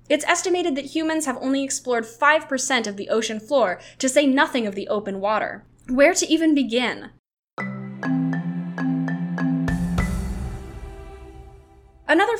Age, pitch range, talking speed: 10-29, 200-285 Hz, 115 wpm